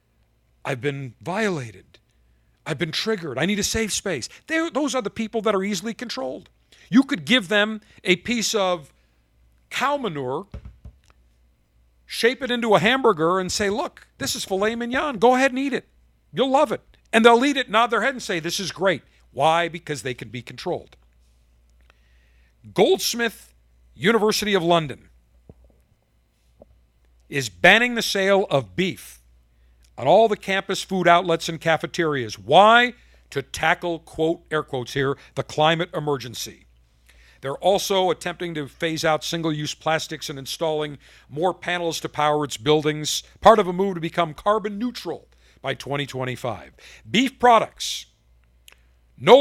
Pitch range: 125-200 Hz